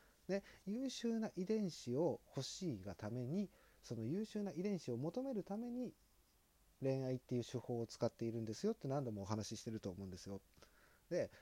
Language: Japanese